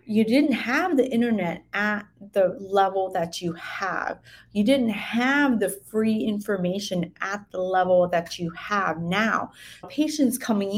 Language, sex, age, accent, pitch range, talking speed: English, female, 30-49, American, 190-255 Hz, 145 wpm